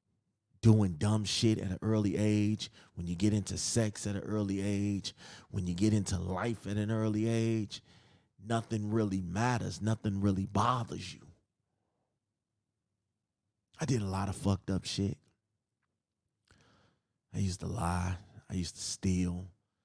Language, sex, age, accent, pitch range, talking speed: English, male, 30-49, American, 95-115 Hz, 145 wpm